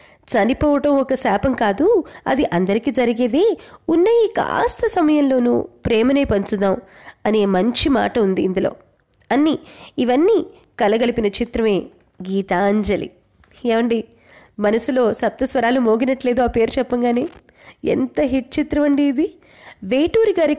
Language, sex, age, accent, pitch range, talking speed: Telugu, female, 20-39, native, 215-280 Hz, 110 wpm